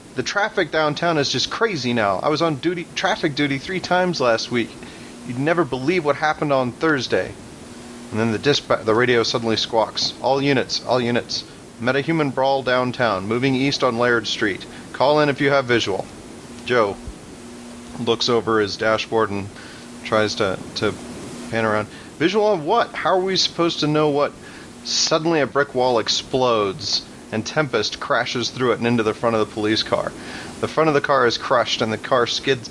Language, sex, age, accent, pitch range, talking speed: English, male, 30-49, American, 115-140 Hz, 185 wpm